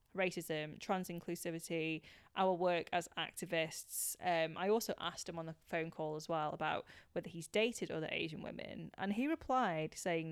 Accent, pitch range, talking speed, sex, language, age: British, 165-205 Hz, 165 wpm, female, English, 20-39